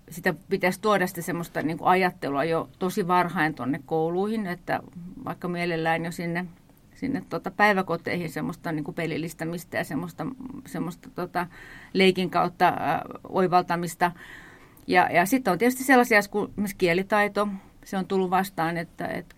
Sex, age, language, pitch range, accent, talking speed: female, 30-49, Finnish, 165-190 Hz, native, 140 wpm